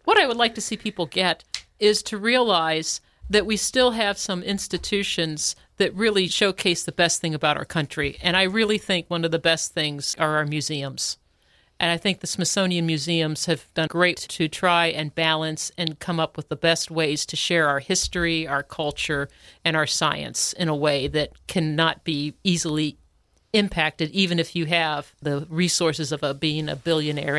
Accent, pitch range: American, 150-185 Hz